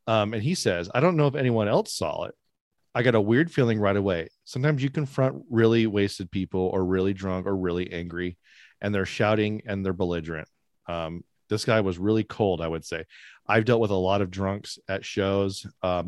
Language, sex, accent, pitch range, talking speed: English, male, American, 95-110 Hz, 210 wpm